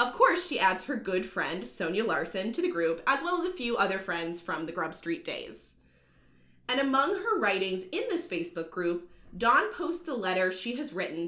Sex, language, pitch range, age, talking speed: female, English, 170-240 Hz, 20-39, 205 wpm